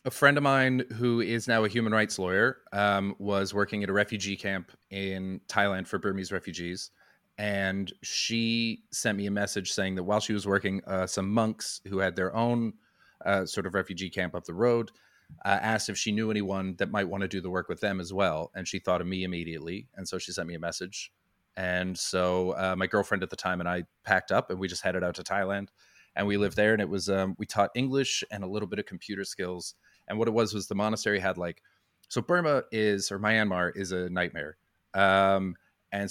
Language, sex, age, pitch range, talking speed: English, male, 30-49, 90-105 Hz, 225 wpm